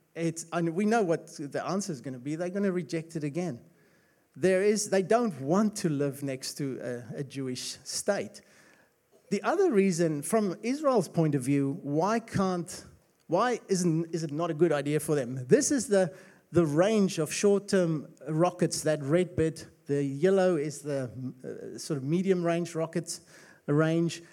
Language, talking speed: English, 175 wpm